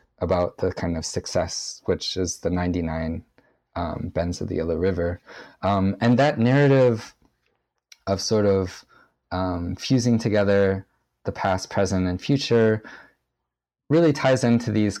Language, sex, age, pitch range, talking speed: English, male, 20-39, 90-110 Hz, 135 wpm